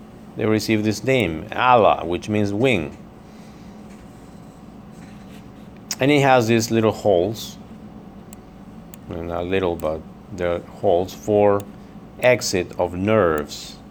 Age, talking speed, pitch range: 50-69, 95 wpm, 95-125 Hz